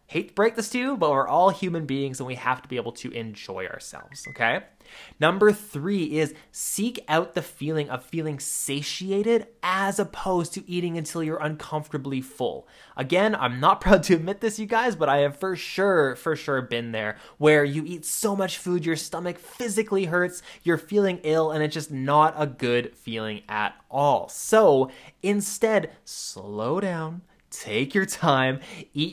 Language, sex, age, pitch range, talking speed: English, male, 20-39, 140-190 Hz, 175 wpm